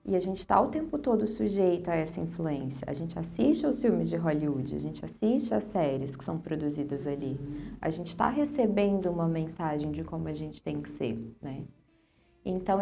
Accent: Brazilian